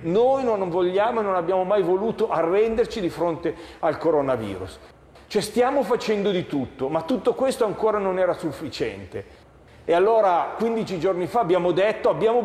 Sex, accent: male, native